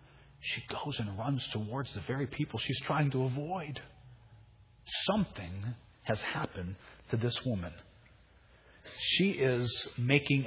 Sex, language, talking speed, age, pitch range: male, English, 120 wpm, 40-59, 120-175 Hz